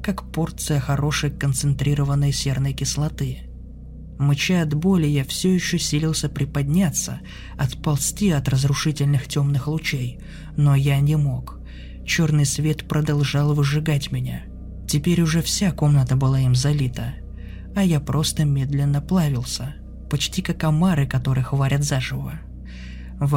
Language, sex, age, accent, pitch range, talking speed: Russian, male, 20-39, native, 135-155 Hz, 120 wpm